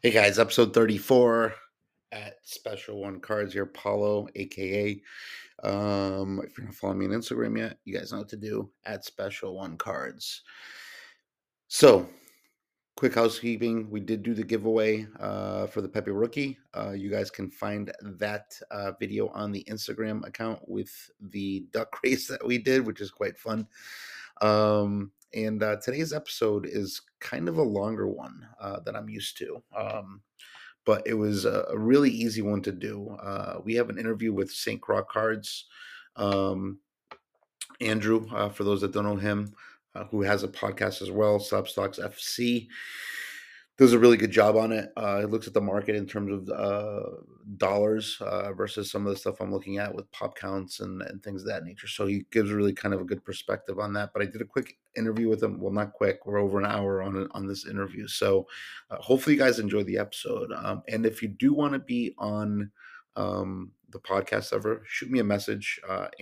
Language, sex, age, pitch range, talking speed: English, male, 30-49, 100-110 Hz, 190 wpm